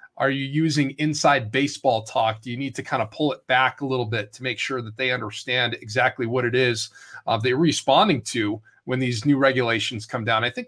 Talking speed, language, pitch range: 225 wpm, English, 120-150 Hz